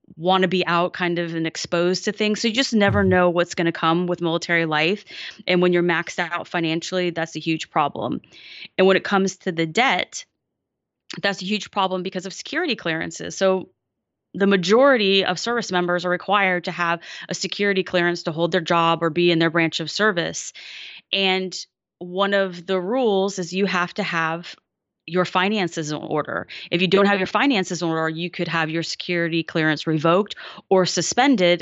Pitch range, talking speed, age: 165-190 Hz, 195 wpm, 20-39